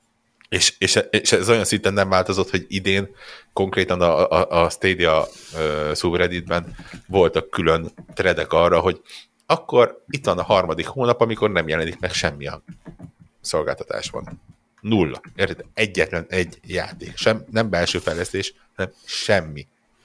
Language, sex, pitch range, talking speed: Hungarian, male, 85-105 Hz, 140 wpm